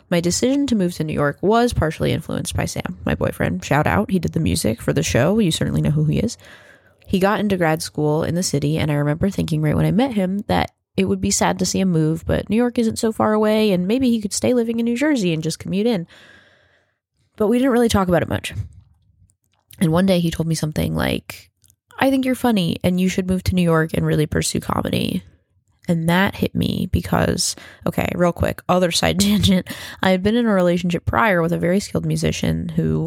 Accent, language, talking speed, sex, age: American, English, 235 wpm, female, 20-39